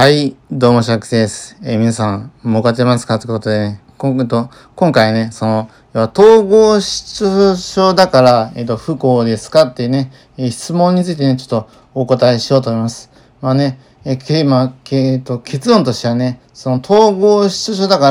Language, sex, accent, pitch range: Japanese, male, native, 120-150 Hz